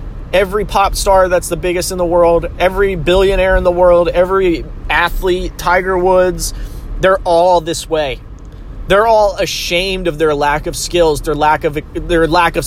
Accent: American